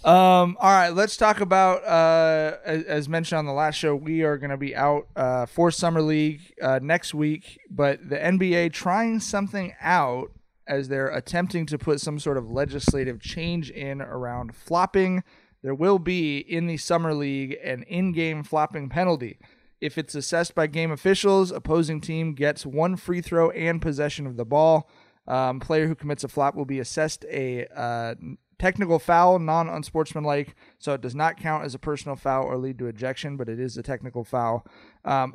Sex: male